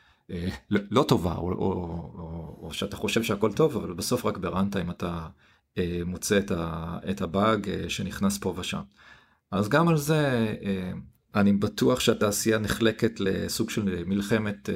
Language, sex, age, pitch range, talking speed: Hebrew, male, 40-59, 90-115 Hz, 140 wpm